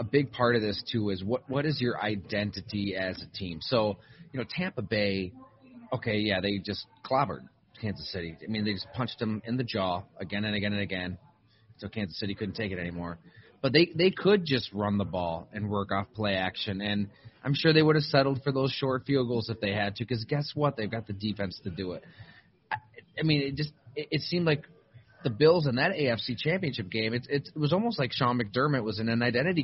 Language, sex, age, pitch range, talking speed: English, male, 30-49, 105-140 Hz, 235 wpm